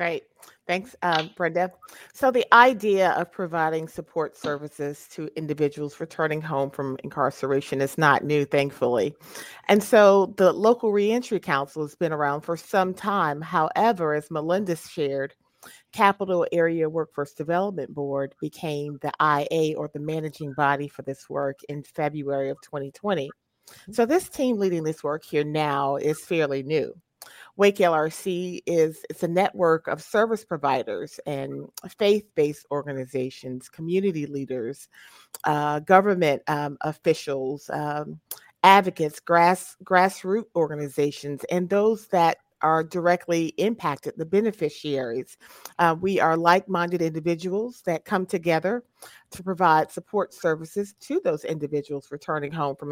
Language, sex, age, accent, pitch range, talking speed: English, female, 40-59, American, 145-185 Hz, 130 wpm